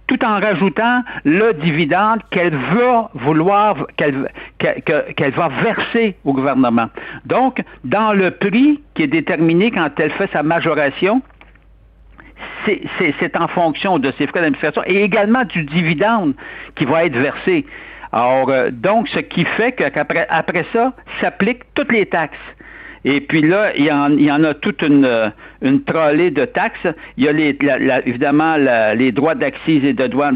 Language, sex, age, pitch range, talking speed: French, male, 60-79, 145-230 Hz, 165 wpm